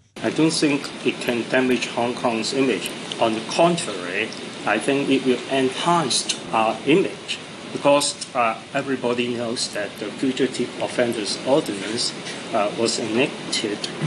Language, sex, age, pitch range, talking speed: English, male, 60-79, 100-130 Hz, 130 wpm